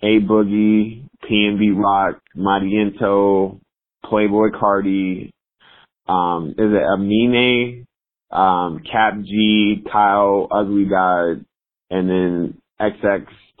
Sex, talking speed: male, 90 wpm